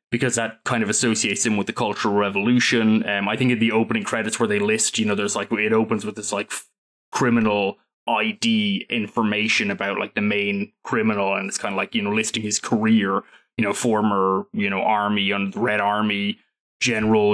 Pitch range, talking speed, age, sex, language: 105-120 Hz, 205 wpm, 20-39, male, English